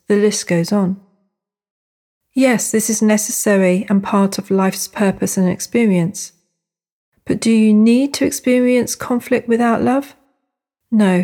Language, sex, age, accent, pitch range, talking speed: English, female, 40-59, British, 185-225 Hz, 135 wpm